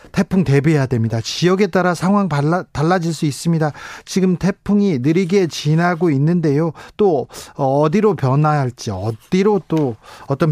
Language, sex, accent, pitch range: Korean, male, native, 135-175 Hz